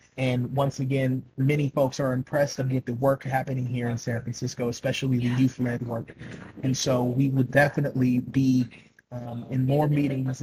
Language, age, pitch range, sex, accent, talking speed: English, 30-49, 130-145 Hz, male, American, 175 wpm